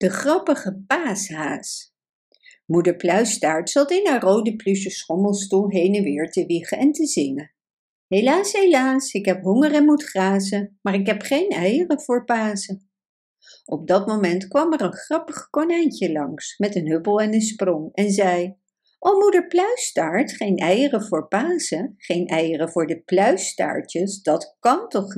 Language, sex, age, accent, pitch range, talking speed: Dutch, female, 60-79, Dutch, 185-290 Hz, 155 wpm